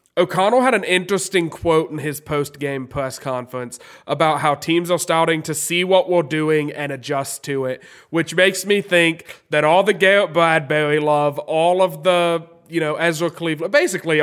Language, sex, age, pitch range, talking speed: English, male, 20-39, 145-175 Hz, 175 wpm